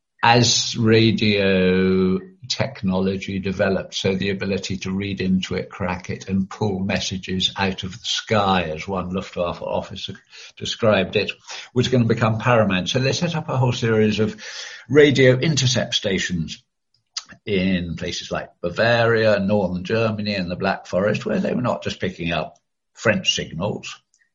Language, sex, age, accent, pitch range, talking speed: English, male, 60-79, British, 95-115 Hz, 150 wpm